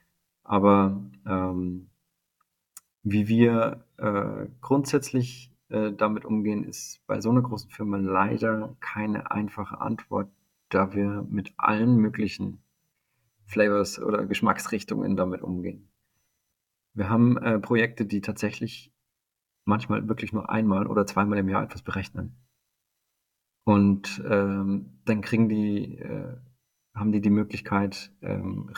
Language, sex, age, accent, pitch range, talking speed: German, male, 40-59, German, 100-120 Hz, 115 wpm